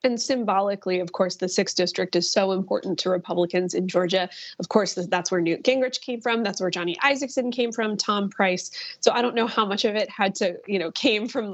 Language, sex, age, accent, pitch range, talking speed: English, female, 20-39, American, 180-230 Hz, 230 wpm